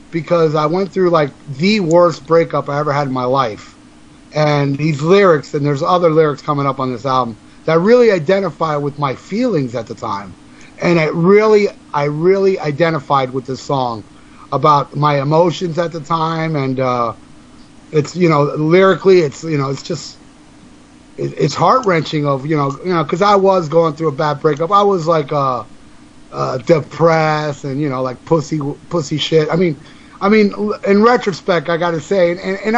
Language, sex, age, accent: English, male, 30-49, American